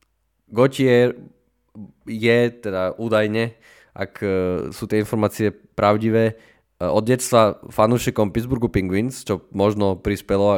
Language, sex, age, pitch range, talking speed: Slovak, male, 20-39, 100-115 Hz, 95 wpm